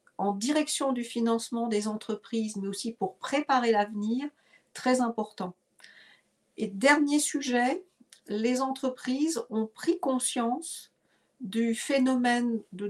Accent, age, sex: French, 50-69, female